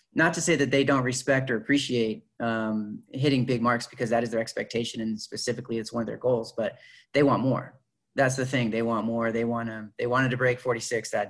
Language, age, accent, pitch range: English, 30-49, American, 110-130 Hz